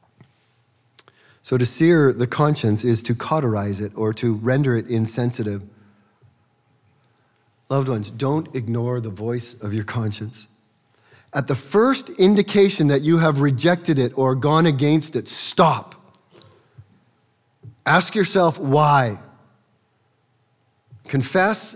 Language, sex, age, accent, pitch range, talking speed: English, male, 40-59, American, 115-160 Hz, 115 wpm